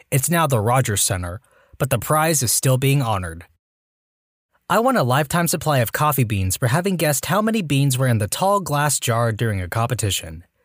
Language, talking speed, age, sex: English, 195 wpm, 20-39, male